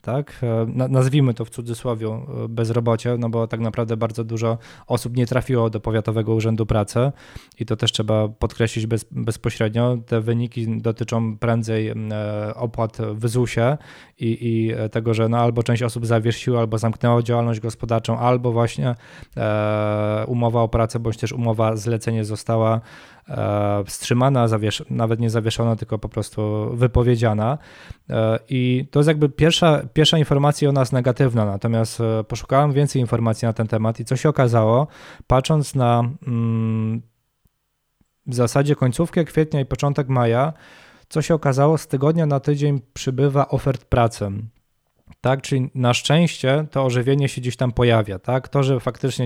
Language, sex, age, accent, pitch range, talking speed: Polish, male, 20-39, native, 115-130 Hz, 145 wpm